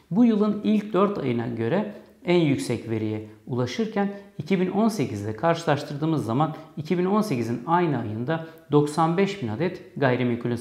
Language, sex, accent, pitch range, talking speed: Turkish, male, native, 115-170 Hz, 105 wpm